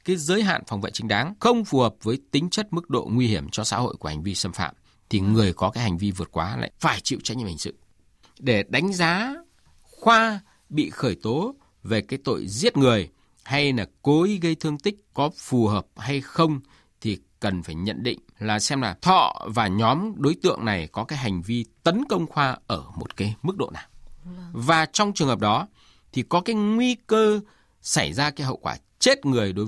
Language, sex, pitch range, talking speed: Vietnamese, male, 110-180 Hz, 220 wpm